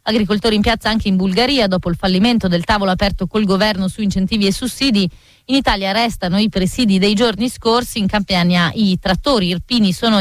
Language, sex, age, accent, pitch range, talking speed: Italian, female, 30-49, native, 195-235 Hz, 190 wpm